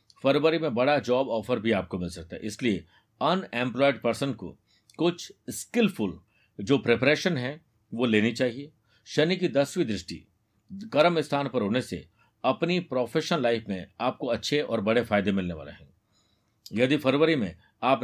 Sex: male